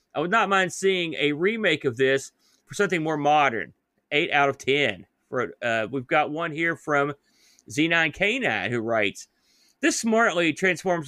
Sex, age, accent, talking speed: male, 40-59, American, 160 wpm